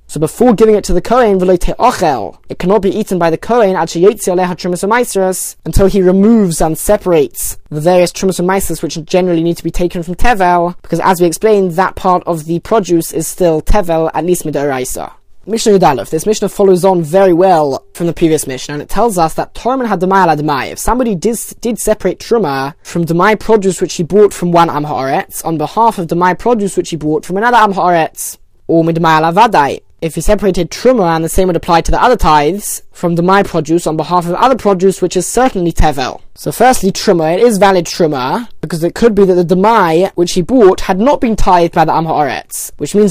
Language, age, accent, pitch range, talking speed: English, 20-39, British, 170-205 Hz, 200 wpm